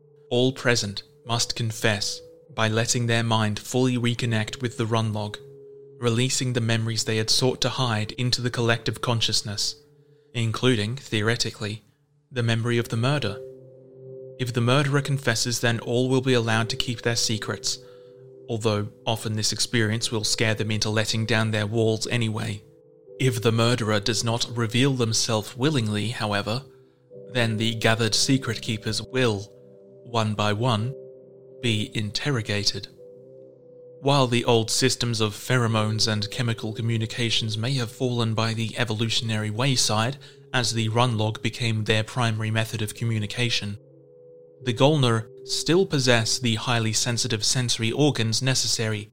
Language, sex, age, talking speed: English, male, 30-49, 140 wpm